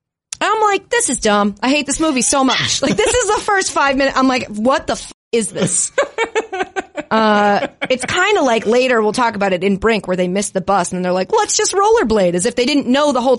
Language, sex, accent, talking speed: English, female, American, 250 wpm